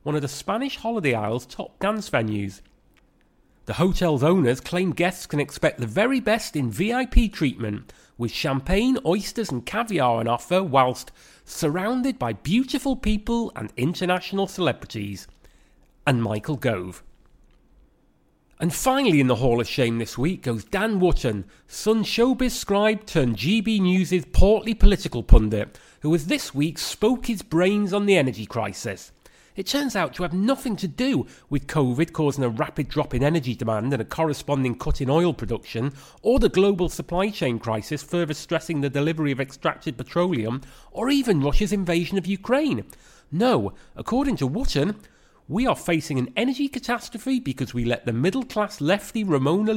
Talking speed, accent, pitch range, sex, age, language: 160 wpm, British, 130-200 Hz, male, 30-49, English